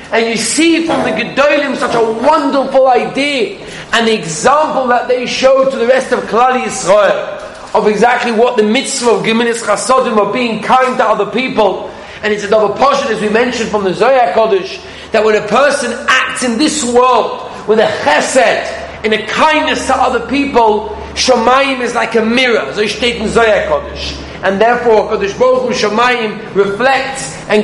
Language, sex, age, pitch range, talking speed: English, male, 30-49, 210-260 Hz, 170 wpm